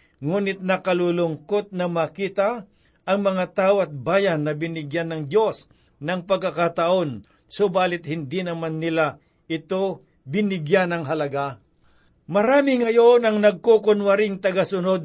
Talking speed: 110 wpm